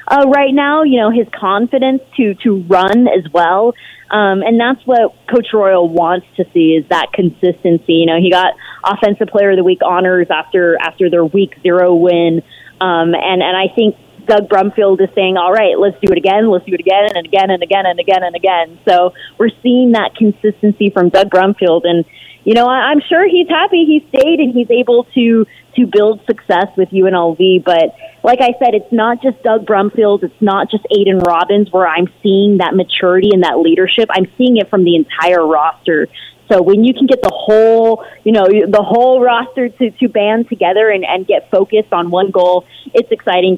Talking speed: 200 wpm